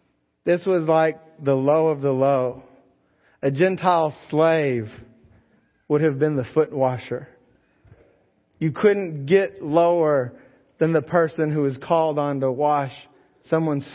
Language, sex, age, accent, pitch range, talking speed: English, male, 40-59, American, 125-170 Hz, 135 wpm